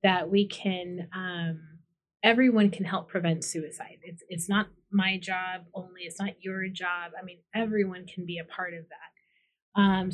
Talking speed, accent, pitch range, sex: 170 wpm, American, 180-205 Hz, female